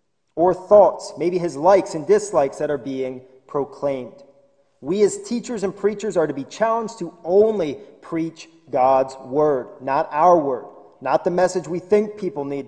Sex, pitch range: male, 140-195 Hz